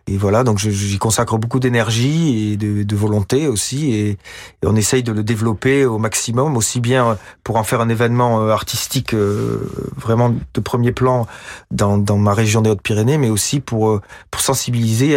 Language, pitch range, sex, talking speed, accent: French, 115-140 Hz, male, 170 wpm, French